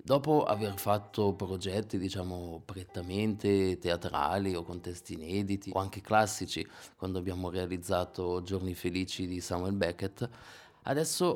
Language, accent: Italian, native